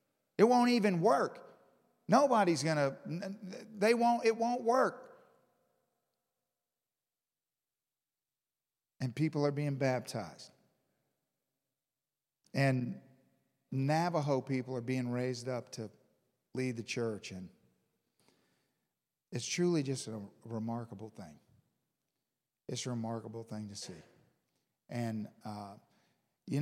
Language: English